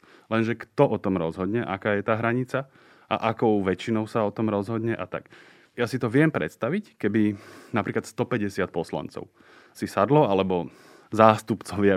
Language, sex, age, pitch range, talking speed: Slovak, male, 30-49, 95-115 Hz, 155 wpm